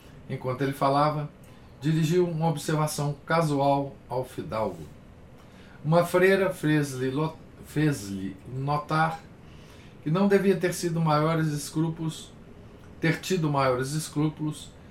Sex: male